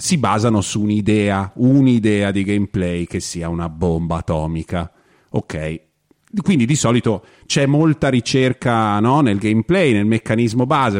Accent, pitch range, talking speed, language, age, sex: native, 100-140 Hz, 135 wpm, Italian, 40-59, male